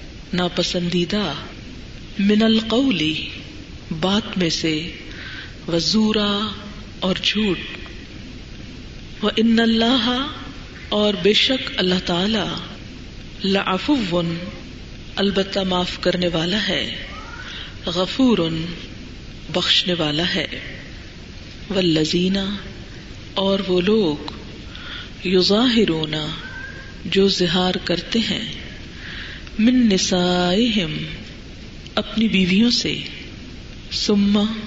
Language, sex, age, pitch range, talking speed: Urdu, female, 40-59, 170-215 Hz, 75 wpm